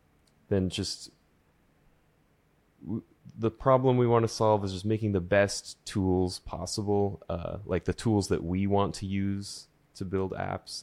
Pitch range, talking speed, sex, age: 90-105 Hz, 150 wpm, male, 20-39